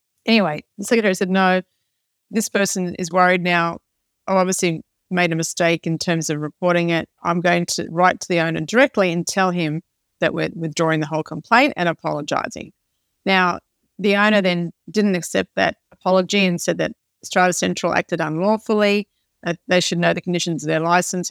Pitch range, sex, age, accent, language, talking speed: 165-195 Hz, female, 40-59, Australian, English, 175 wpm